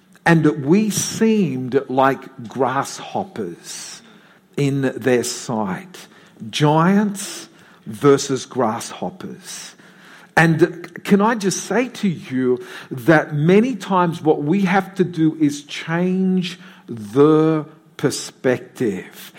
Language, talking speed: English, 95 wpm